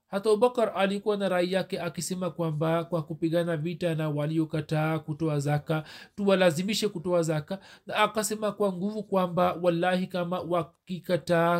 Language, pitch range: Swahili, 170-195 Hz